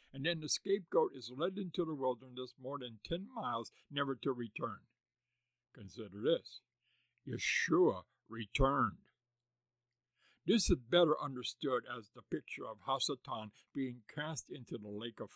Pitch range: 120-155 Hz